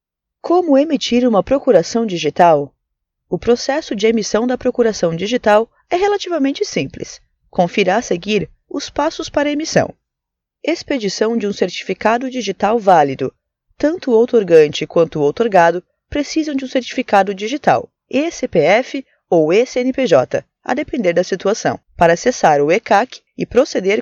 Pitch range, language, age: 190-280 Hz, Portuguese, 20-39